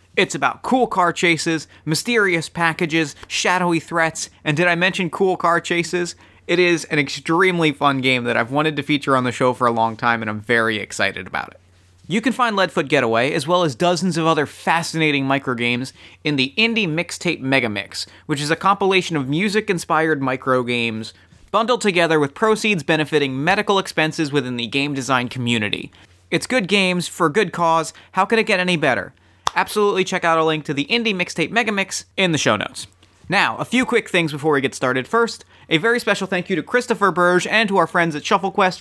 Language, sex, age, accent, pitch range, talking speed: English, male, 30-49, American, 140-190 Hz, 205 wpm